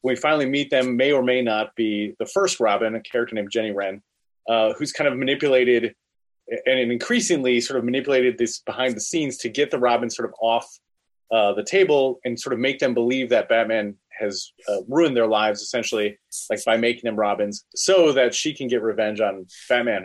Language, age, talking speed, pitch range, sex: English, 30-49, 205 wpm, 115-135 Hz, male